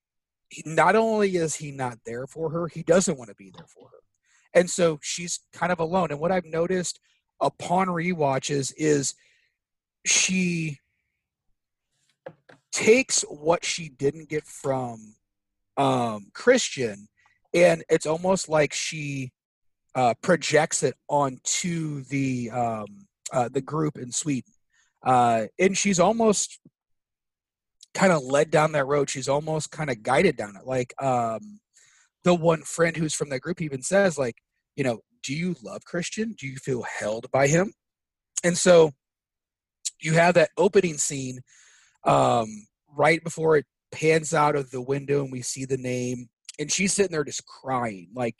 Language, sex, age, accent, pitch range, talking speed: English, male, 30-49, American, 130-170 Hz, 155 wpm